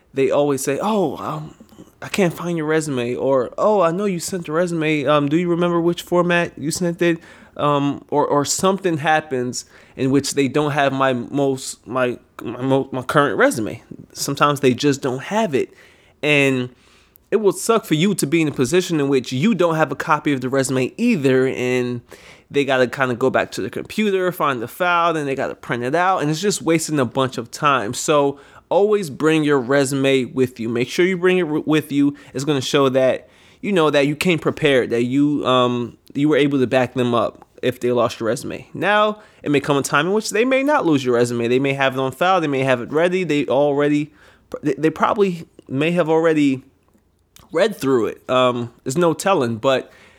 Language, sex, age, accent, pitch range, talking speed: Italian, male, 20-39, American, 130-170 Hz, 215 wpm